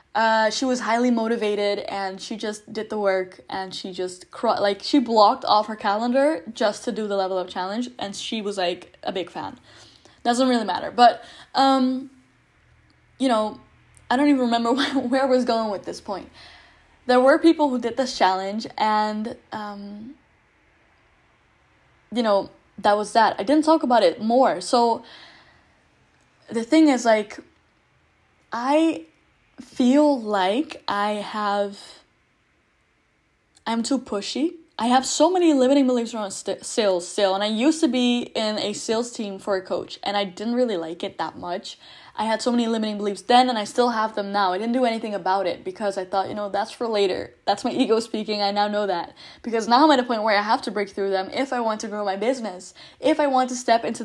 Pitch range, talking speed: 205-250 Hz, 195 wpm